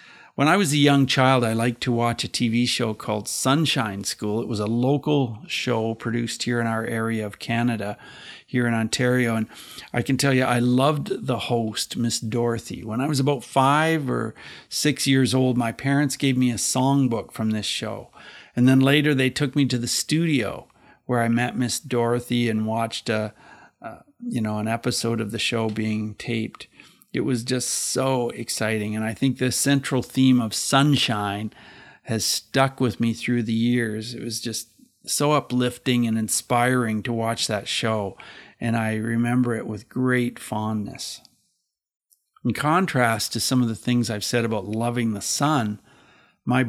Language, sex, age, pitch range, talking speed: English, male, 50-69, 110-130 Hz, 180 wpm